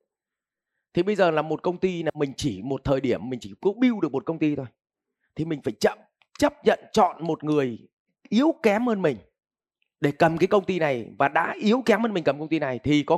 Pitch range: 145-200 Hz